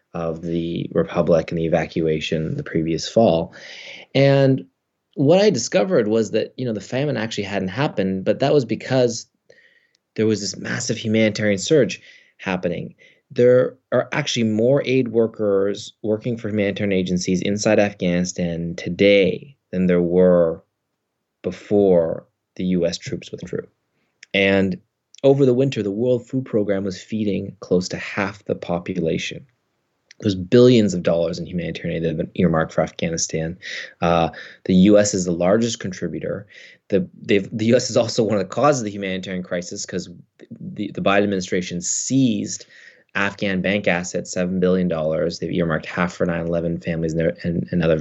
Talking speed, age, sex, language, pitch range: 155 wpm, 20-39, male, English, 90-115 Hz